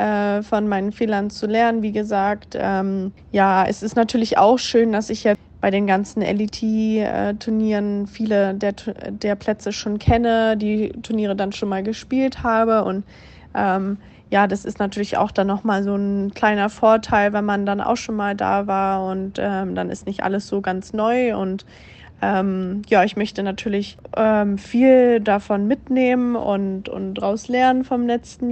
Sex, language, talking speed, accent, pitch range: female, German, 170 wpm, German, 200-230 Hz